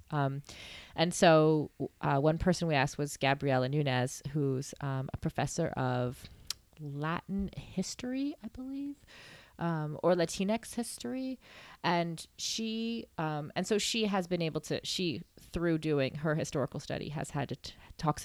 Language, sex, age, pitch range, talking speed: English, female, 30-49, 145-185 Hz, 140 wpm